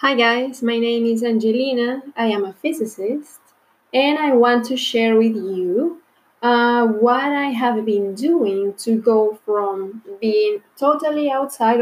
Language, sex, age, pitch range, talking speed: English, female, 20-39, 215-250 Hz, 145 wpm